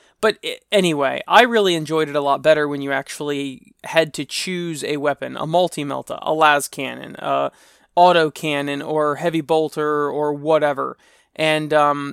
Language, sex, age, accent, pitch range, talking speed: English, male, 20-39, American, 150-180 Hz, 160 wpm